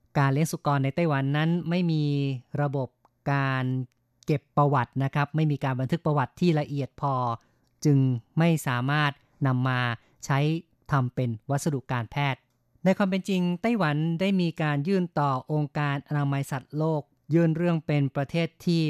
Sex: female